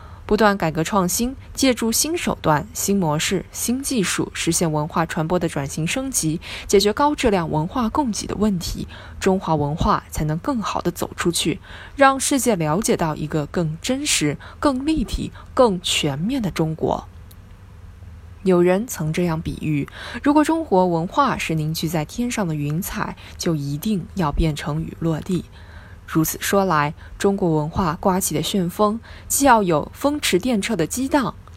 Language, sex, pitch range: Chinese, female, 155-235 Hz